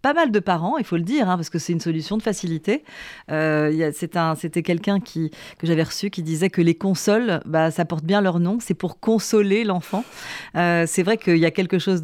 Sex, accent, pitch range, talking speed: female, French, 165-205 Hz, 250 wpm